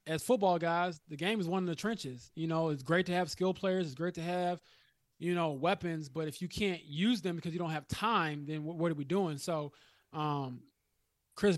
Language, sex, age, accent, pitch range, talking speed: English, male, 20-39, American, 150-175 Hz, 235 wpm